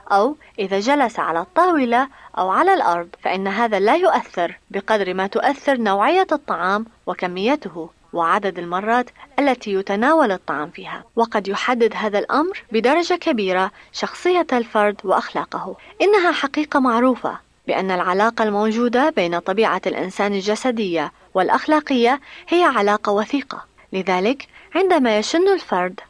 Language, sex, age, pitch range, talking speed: Arabic, female, 20-39, 195-285 Hz, 115 wpm